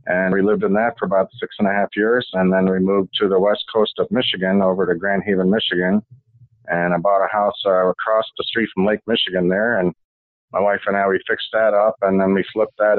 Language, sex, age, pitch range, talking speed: English, male, 50-69, 95-120 Hz, 245 wpm